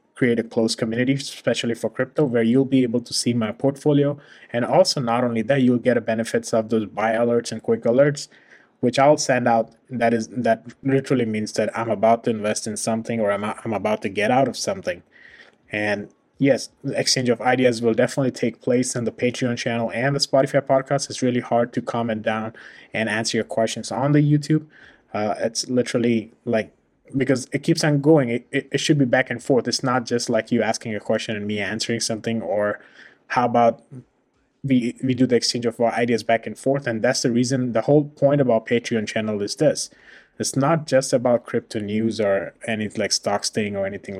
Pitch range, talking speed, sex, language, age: 110-130 Hz, 210 wpm, male, English, 20-39